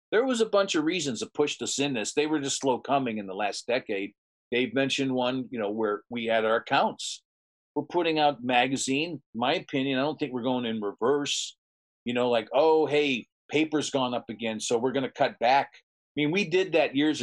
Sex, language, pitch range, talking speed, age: male, English, 115-145 Hz, 225 wpm, 50-69